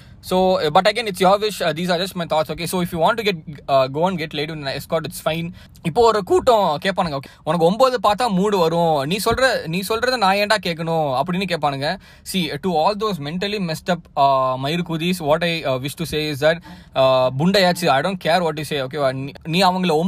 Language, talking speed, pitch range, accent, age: Tamil, 240 wpm, 140-185 Hz, native, 20-39